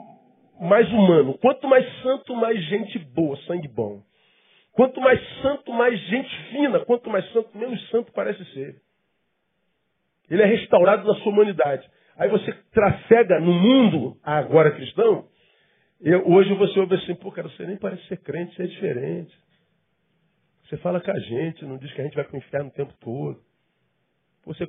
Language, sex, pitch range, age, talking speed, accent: Portuguese, male, 145-195 Hz, 50-69, 165 wpm, Brazilian